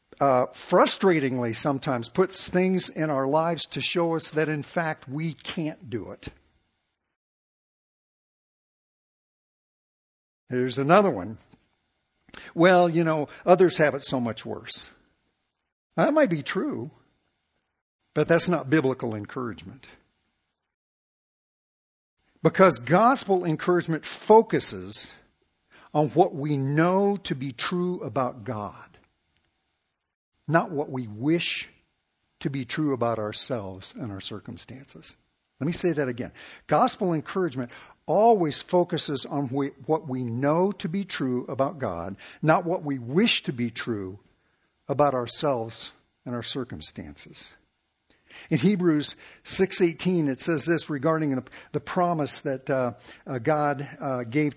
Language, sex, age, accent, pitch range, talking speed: English, male, 60-79, American, 120-170 Hz, 120 wpm